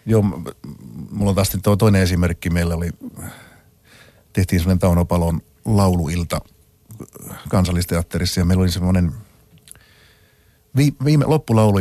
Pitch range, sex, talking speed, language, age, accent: 85-110 Hz, male, 95 wpm, Finnish, 50-69, native